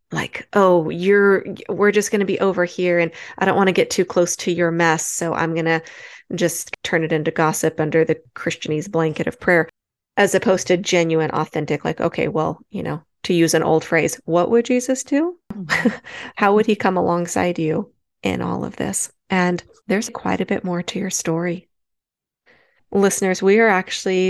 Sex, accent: female, American